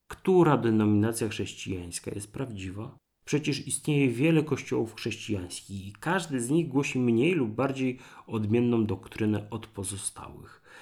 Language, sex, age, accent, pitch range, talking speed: Polish, male, 30-49, native, 100-125 Hz, 120 wpm